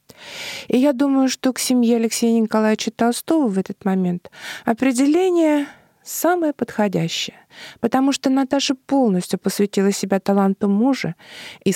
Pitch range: 195-275 Hz